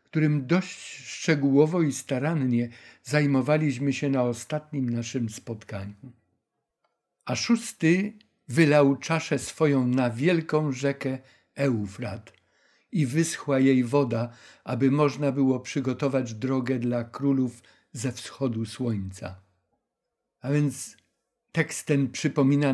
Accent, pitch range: native, 120-150 Hz